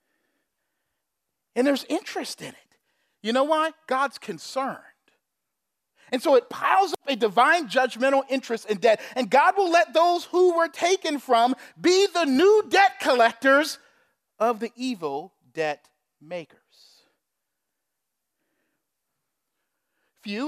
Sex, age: male, 40-59